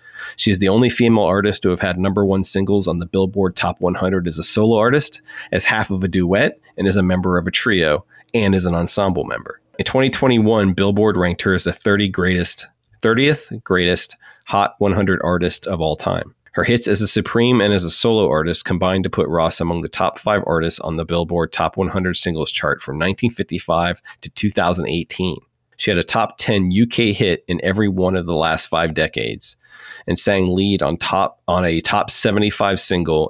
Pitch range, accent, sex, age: 85-105 Hz, American, male, 30-49